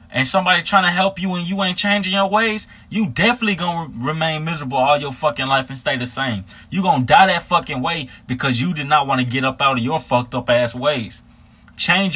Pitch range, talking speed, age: 120-170 Hz, 240 wpm, 20-39